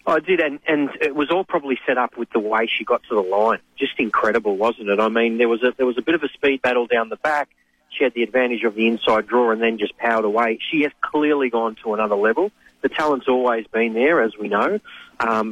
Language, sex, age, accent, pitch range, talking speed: English, male, 40-59, Australian, 115-135 Hz, 260 wpm